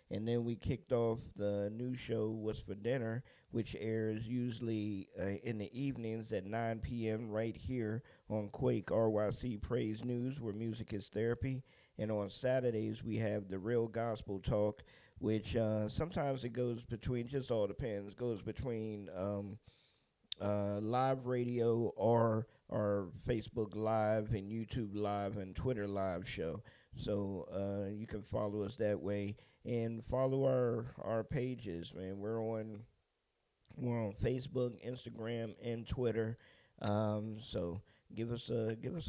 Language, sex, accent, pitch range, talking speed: English, male, American, 105-120 Hz, 145 wpm